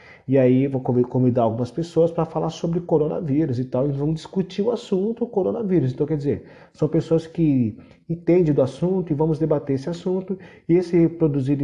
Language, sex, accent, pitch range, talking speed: Portuguese, male, Brazilian, 115-155 Hz, 190 wpm